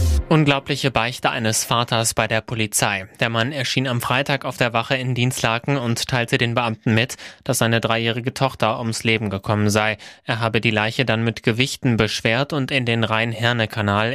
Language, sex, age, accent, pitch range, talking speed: German, male, 20-39, German, 115-130 Hz, 180 wpm